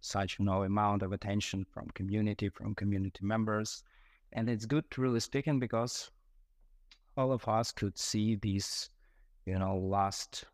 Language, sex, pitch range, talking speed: English, male, 95-110 Hz, 160 wpm